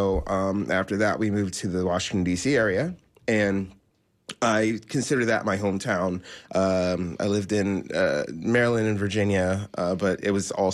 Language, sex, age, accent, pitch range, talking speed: English, male, 20-39, American, 90-110 Hz, 160 wpm